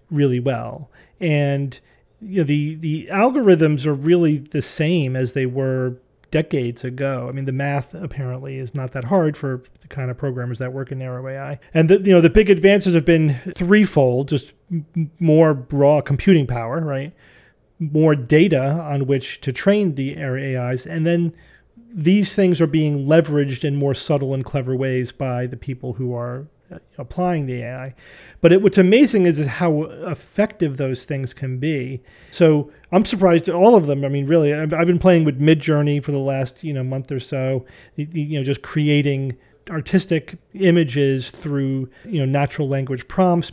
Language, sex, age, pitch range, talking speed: English, male, 40-59, 135-170 Hz, 180 wpm